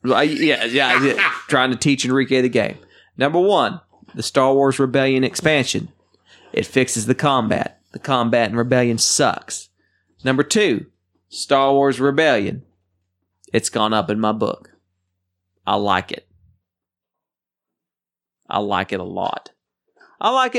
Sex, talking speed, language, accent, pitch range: male, 135 wpm, English, American, 115-135 Hz